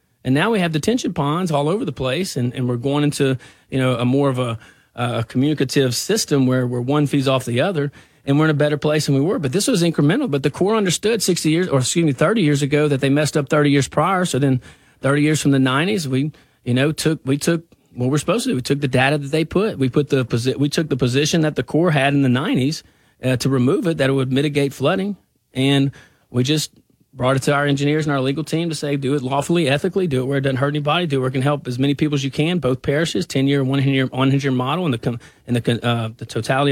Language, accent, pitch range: English, American, 130-155 Hz